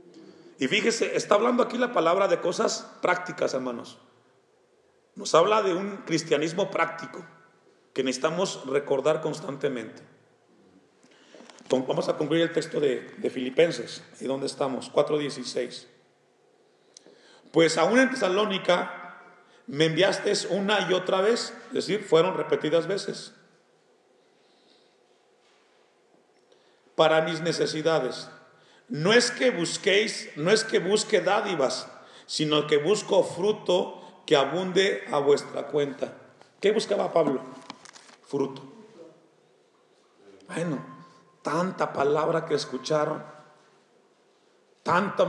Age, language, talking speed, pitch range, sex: 40-59, Spanish, 105 wpm, 150-210 Hz, male